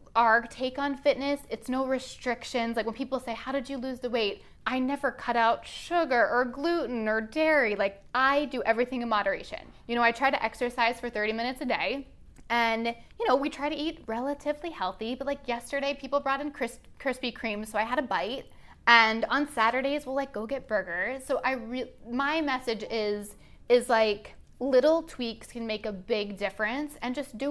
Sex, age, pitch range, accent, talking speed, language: female, 20-39, 225-275 Hz, American, 200 wpm, English